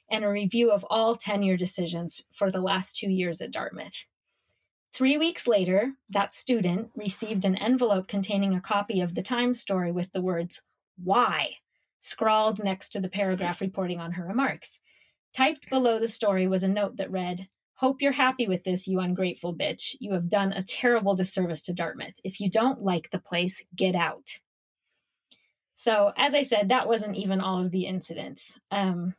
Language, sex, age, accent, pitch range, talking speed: English, female, 20-39, American, 185-225 Hz, 175 wpm